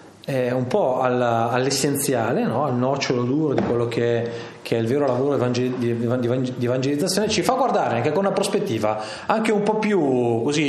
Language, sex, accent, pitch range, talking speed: Italian, male, native, 115-150 Hz, 155 wpm